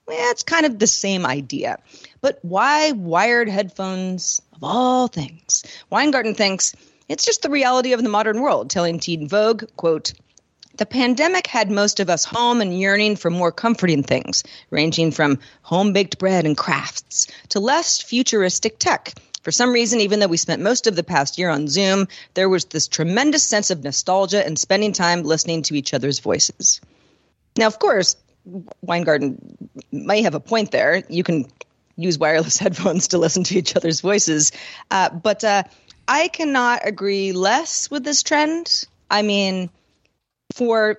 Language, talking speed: English, 165 wpm